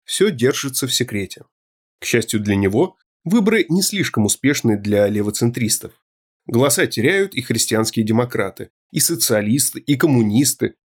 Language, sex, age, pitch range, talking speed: Russian, male, 30-49, 105-145 Hz, 125 wpm